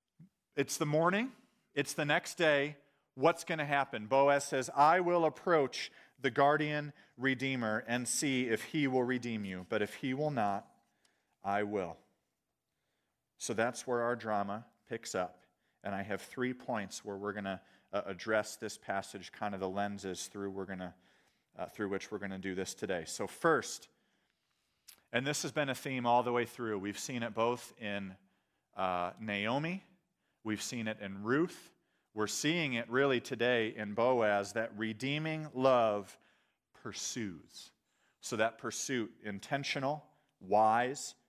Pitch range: 105-150 Hz